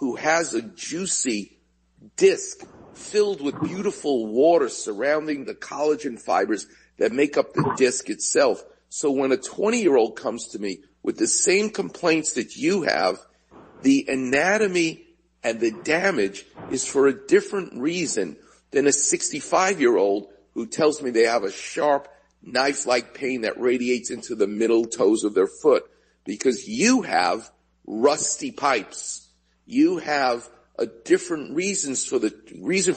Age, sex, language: 50-69, male, English